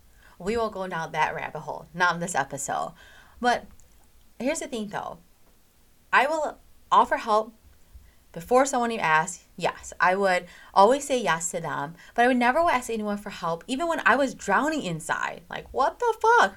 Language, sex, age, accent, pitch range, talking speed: English, female, 20-39, American, 195-275 Hz, 180 wpm